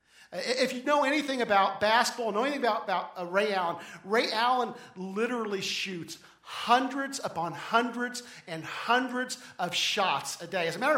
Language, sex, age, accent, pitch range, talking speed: English, male, 50-69, American, 190-240 Hz, 160 wpm